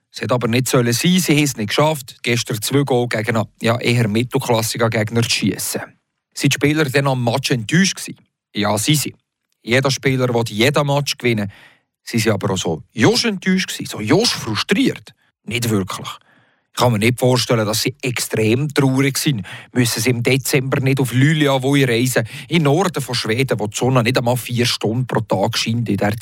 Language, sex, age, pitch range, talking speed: German, male, 40-59, 120-150 Hz, 195 wpm